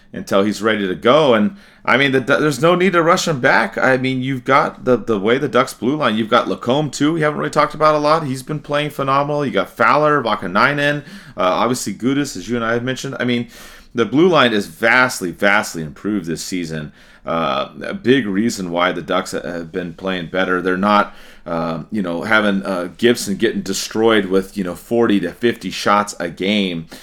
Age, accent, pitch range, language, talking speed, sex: 30-49, American, 95-125 Hz, English, 215 wpm, male